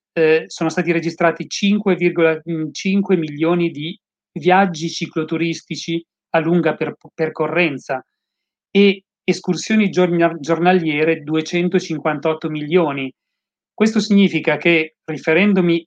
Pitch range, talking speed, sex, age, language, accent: 155-180 Hz, 85 wpm, male, 40-59, Italian, native